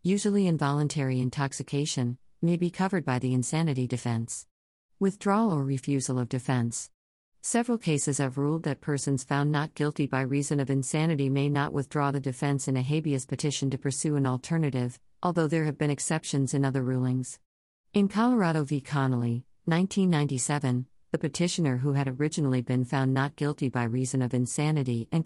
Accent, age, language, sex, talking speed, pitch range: American, 50-69, English, female, 160 wpm, 130-155 Hz